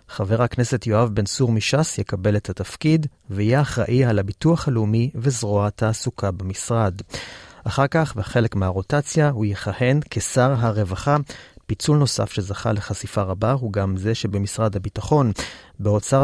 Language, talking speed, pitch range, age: Hebrew, 135 wpm, 105-140 Hz, 30-49